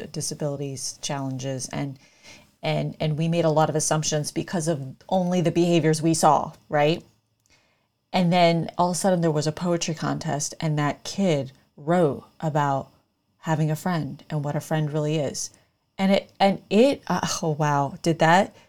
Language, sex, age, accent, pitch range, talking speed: English, female, 30-49, American, 150-190 Hz, 165 wpm